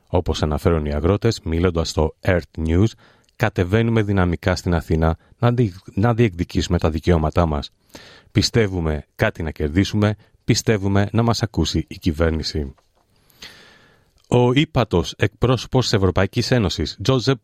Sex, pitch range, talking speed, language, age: male, 80-110 Hz, 115 wpm, Greek, 40-59